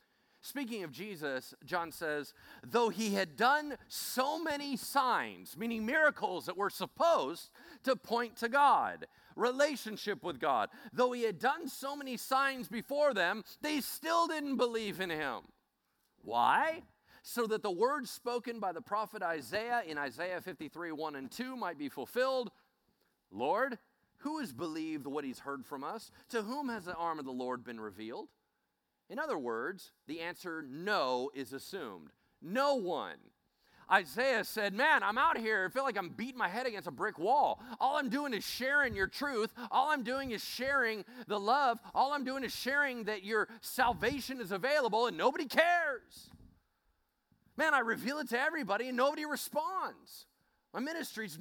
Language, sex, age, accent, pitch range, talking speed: English, male, 40-59, American, 190-275 Hz, 165 wpm